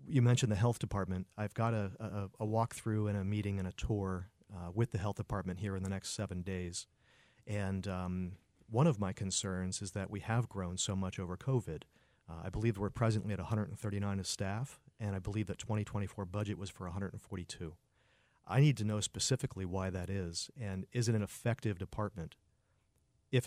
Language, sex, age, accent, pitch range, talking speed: English, male, 40-59, American, 95-115 Hz, 195 wpm